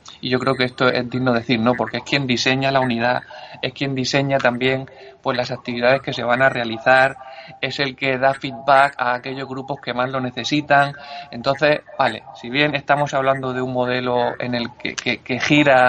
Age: 20-39